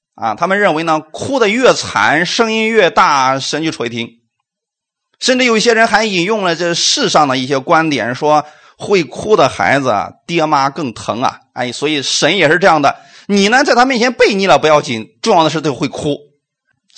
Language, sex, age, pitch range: Chinese, male, 30-49, 145-225 Hz